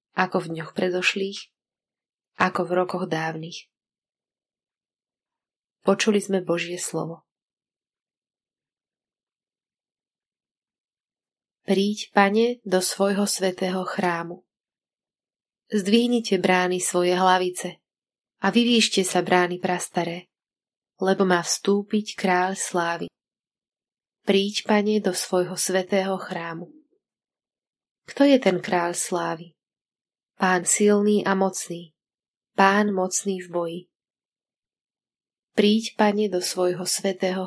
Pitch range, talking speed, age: 175-200 Hz, 90 wpm, 20-39